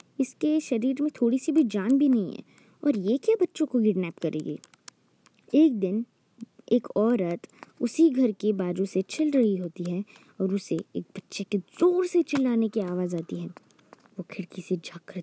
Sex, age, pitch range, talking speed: female, 20-39, 180-220 Hz, 180 wpm